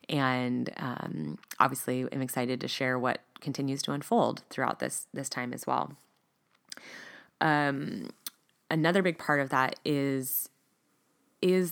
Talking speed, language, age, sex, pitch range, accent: 130 wpm, English, 20-39, female, 130-160 Hz, American